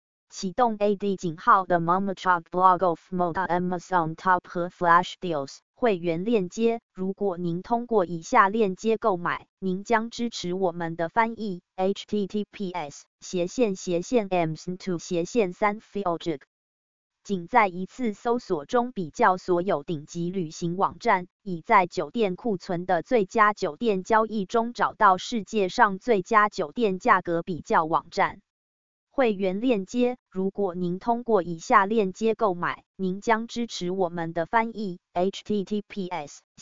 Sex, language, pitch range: female, English, 175-215 Hz